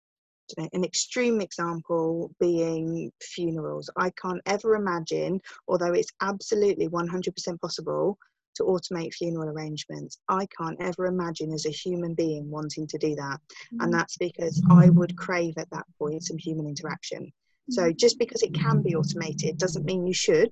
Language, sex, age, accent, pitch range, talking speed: English, female, 20-39, British, 170-215 Hz, 155 wpm